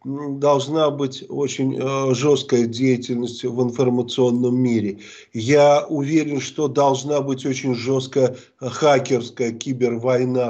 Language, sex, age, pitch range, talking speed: Russian, male, 50-69, 130-170 Hz, 95 wpm